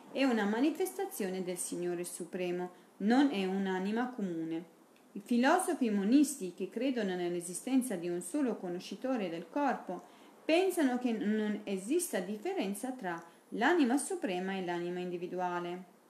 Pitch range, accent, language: 185-270 Hz, native, Italian